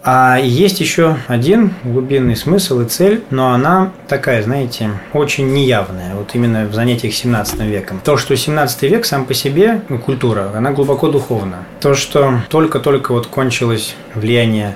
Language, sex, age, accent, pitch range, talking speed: Russian, male, 20-39, native, 110-140 Hz, 155 wpm